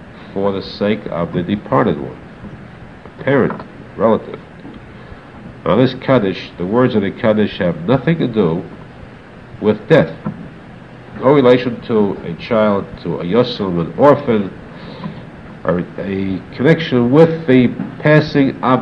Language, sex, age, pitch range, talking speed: English, male, 70-89, 100-125 Hz, 135 wpm